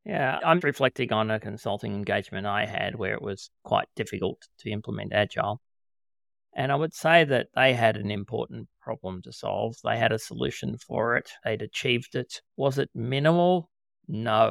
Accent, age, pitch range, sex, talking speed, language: Australian, 30-49, 100-125 Hz, male, 175 wpm, English